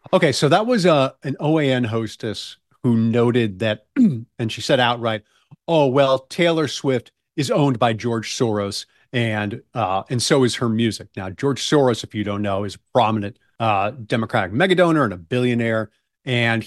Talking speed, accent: 175 wpm, American